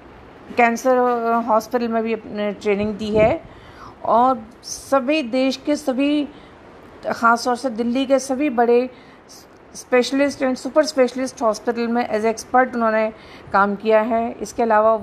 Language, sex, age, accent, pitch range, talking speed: Hindi, female, 50-69, native, 230-275 Hz, 135 wpm